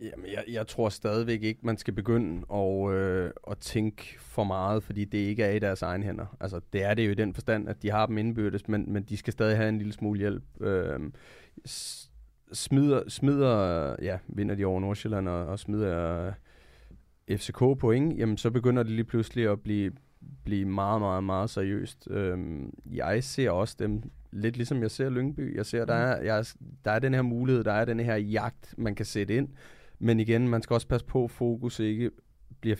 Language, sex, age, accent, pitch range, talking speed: Danish, male, 30-49, native, 100-115 Hz, 205 wpm